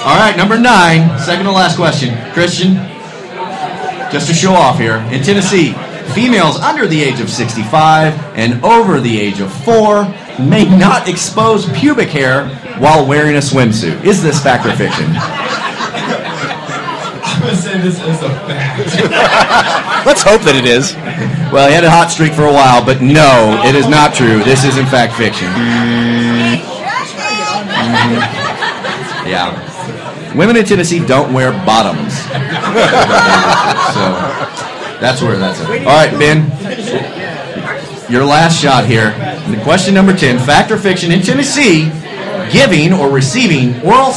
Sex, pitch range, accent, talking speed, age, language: male, 135-185 Hz, American, 145 wpm, 30-49, English